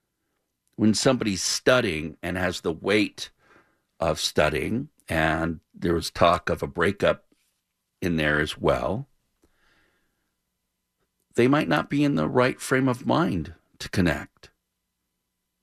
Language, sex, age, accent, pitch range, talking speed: English, male, 50-69, American, 85-110 Hz, 125 wpm